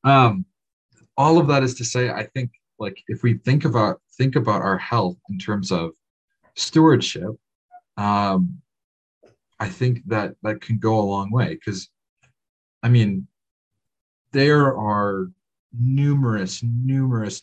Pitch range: 95-120 Hz